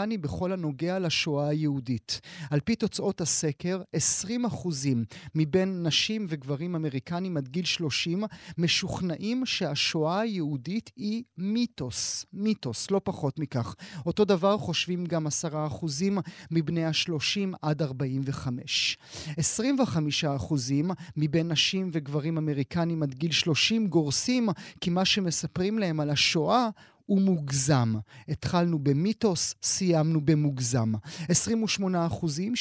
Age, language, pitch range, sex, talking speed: 30-49, Hebrew, 145-185 Hz, male, 105 wpm